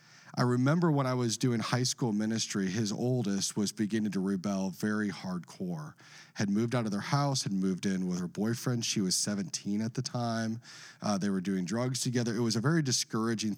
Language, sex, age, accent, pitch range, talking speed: English, male, 40-59, American, 105-140 Hz, 205 wpm